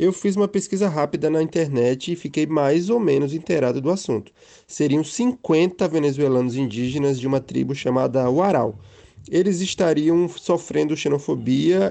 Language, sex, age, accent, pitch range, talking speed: Portuguese, male, 20-39, Brazilian, 140-185 Hz, 140 wpm